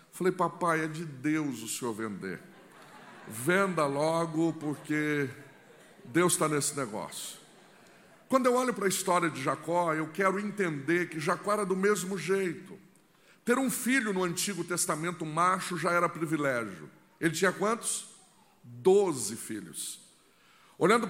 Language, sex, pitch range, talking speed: Portuguese, male, 160-205 Hz, 135 wpm